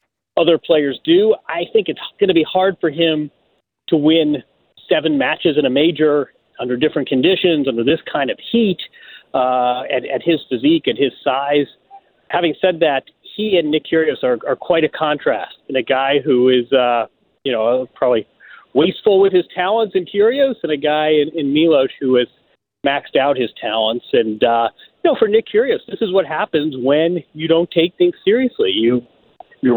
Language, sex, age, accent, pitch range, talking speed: English, male, 40-59, American, 145-175 Hz, 185 wpm